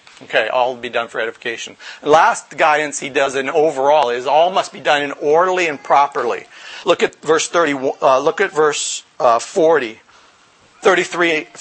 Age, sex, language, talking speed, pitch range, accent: 50-69, male, English, 175 wpm, 140-195 Hz, American